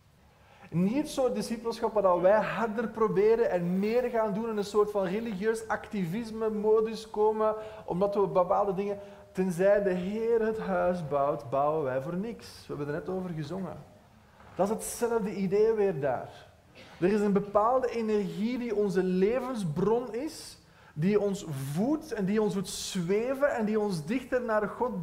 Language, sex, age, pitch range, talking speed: Dutch, male, 20-39, 165-215 Hz, 170 wpm